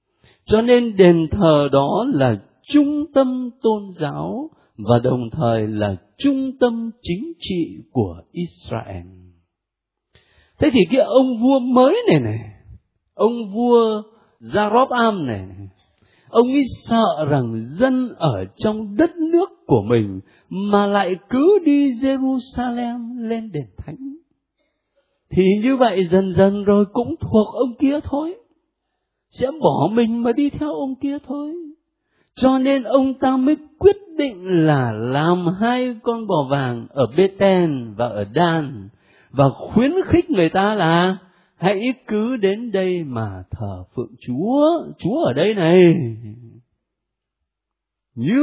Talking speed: 135 wpm